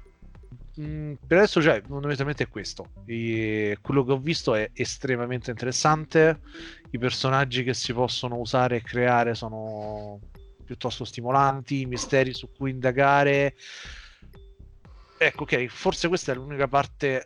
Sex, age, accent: male, 30-49, native